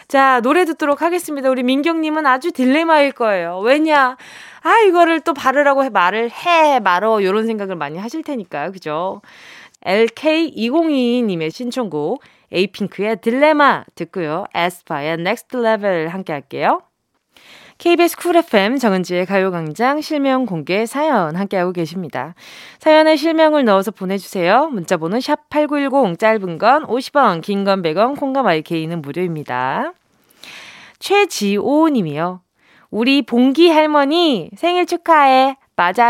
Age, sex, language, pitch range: 20-39, female, Korean, 195-300 Hz